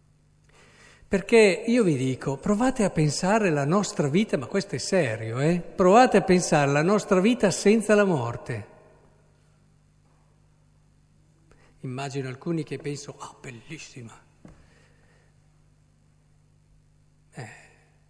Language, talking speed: Italian, 105 wpm